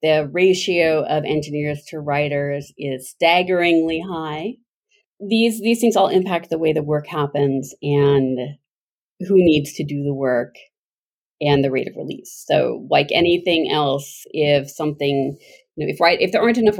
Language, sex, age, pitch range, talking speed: English, female, 30-49, 145-185 Hz, 160 wpm